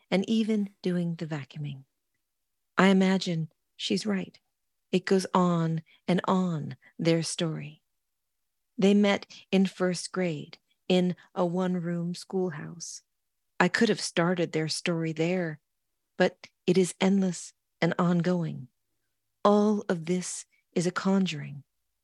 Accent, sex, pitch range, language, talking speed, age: American, female, 160-195 Hz, English, 120 wpm, 40-59